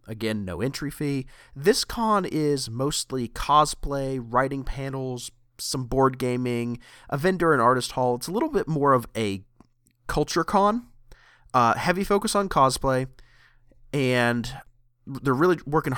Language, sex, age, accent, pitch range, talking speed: English, male, 30-49, American, 110-140 Hz, 140 wpm